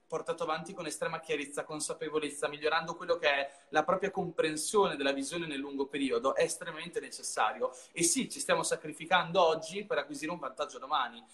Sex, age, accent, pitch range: male, 30-49, native, 140-190 Hz